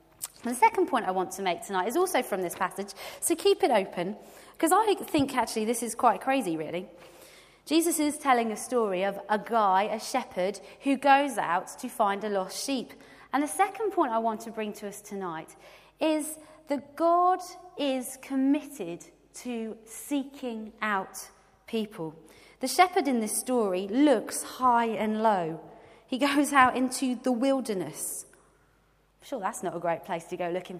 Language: English